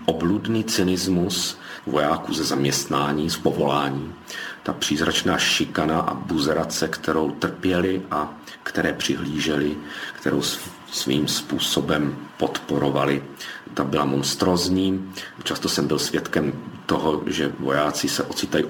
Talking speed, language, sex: 105 wpm, Czech, male